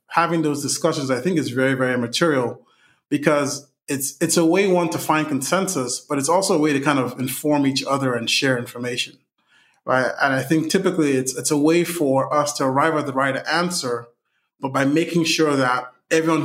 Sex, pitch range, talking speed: male, 125-155 Hz, 200 wpm